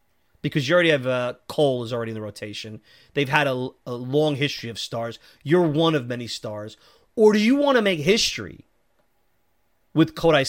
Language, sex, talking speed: English, male, 190 wpm